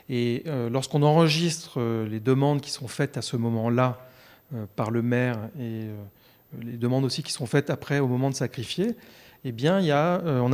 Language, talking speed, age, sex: French, 180 wpm, 30-49, male